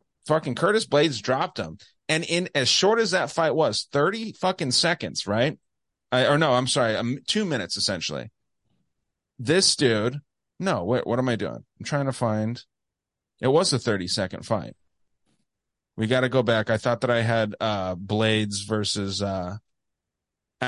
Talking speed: 165 wpm